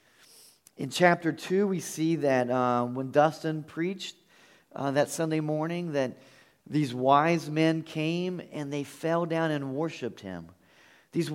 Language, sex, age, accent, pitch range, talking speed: English, male, 40-59, American, 135-175 Hz, 145 wpm